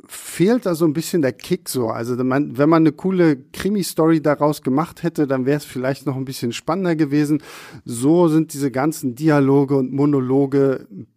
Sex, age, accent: male, 50-69, German